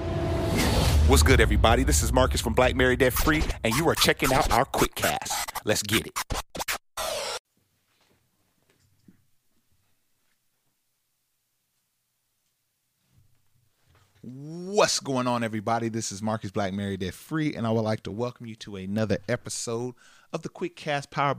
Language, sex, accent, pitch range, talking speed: English, male, American, 100-120 Hz, 135 wpm